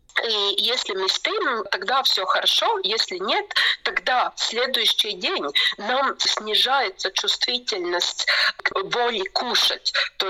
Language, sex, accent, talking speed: Russian, female, native, 110 wpm